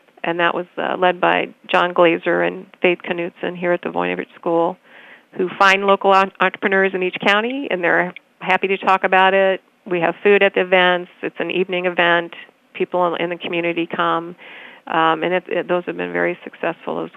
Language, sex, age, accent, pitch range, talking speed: English, female, 40-59, American, 170-195 Hz, 185 wpm